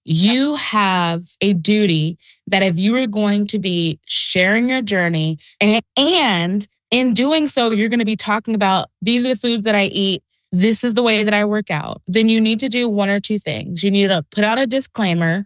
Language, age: English, 20-39